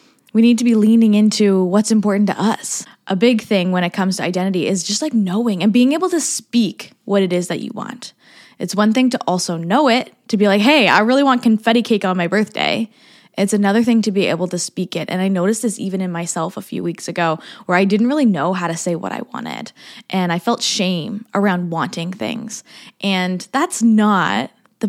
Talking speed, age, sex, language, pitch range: 225 wpm, 10-29, female, English, 190-240 Hz